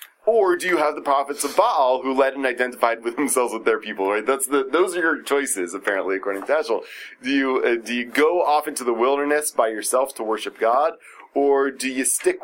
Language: English